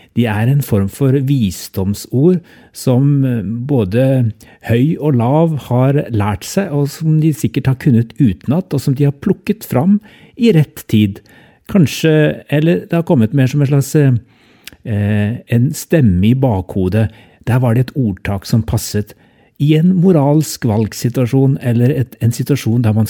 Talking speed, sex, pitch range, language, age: 160 wpm, male, 110-140 Hz, English, 60-79